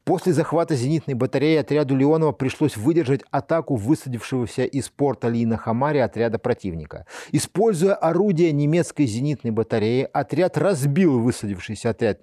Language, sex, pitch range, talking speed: Russian, male, 120-155 Hz, 125 wpm